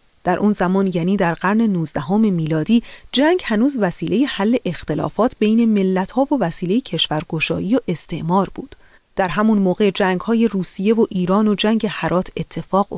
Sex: female